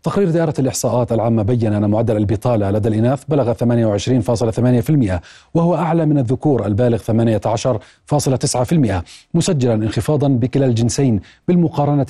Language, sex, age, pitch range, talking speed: Arabic, male, 40-59, 115-135 Hz, 115 wpm